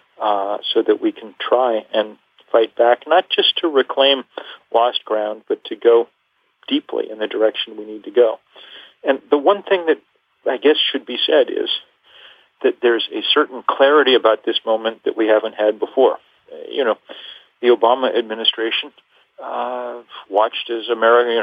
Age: 50-69